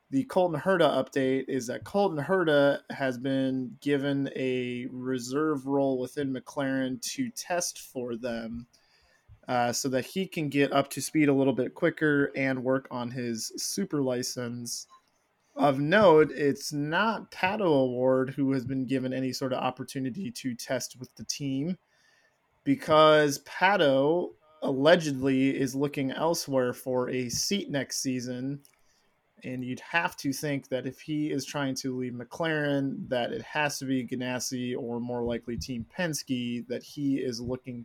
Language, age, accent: English, 20-39, American